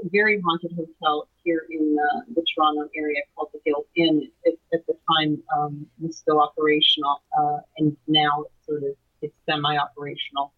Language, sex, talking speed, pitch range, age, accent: English, female, 170 wpm, 155-220 Hz, 40-59, American